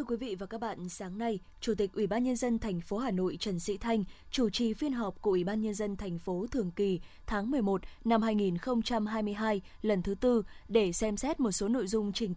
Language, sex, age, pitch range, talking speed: Vietnamese, female, 20-39, 200-245 Hz, 240 wpm